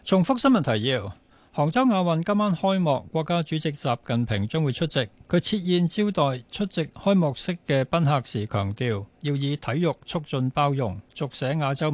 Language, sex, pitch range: Chinese, male, 125-165 Hz